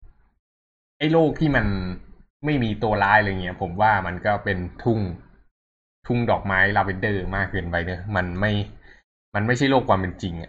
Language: Thai